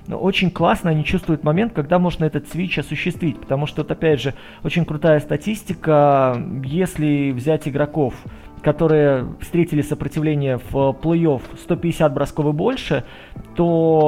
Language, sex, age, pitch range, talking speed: Russian, male, 20-39, 140-160 Hz, 140 wpm